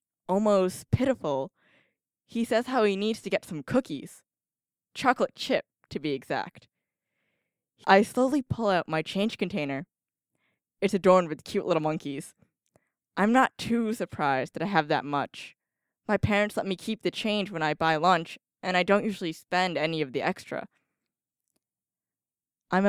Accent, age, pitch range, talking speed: American, 10-29, 170-220 Hz, 155 wpm